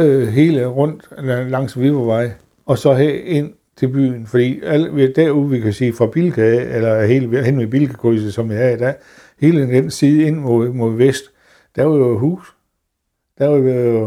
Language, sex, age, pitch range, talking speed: Danish, male, 60-79, 115-140 Hz, 170 wpm